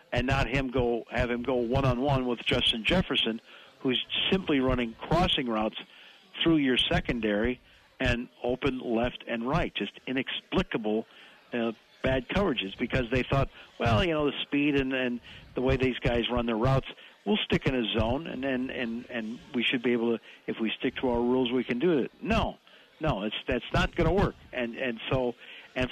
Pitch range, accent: 120-155 Hz, American